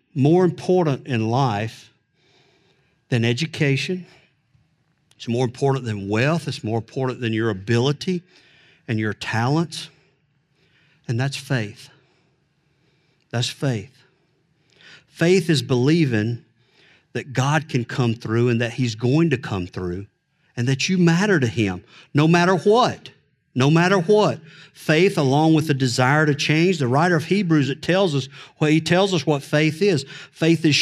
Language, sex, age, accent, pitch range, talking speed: English, male, 50-69, American, 130-165 Hz, 150 wpm